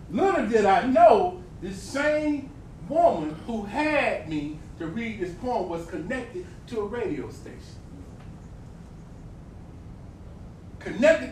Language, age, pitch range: English, 40-59, 180-250 Hz